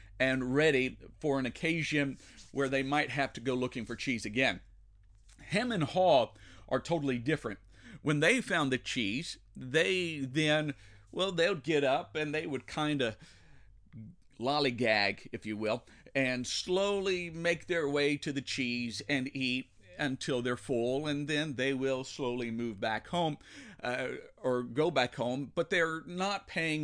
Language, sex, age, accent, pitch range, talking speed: English, male, 50-69, American, 120-155 Hz, 155 wpm